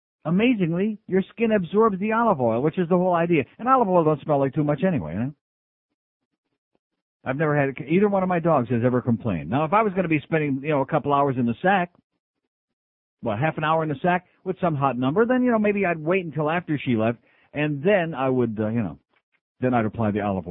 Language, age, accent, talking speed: English, 60-79, American, 245 wpm